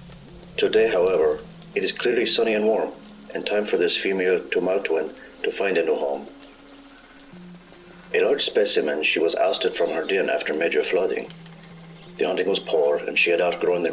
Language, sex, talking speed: English, male, 170 wpm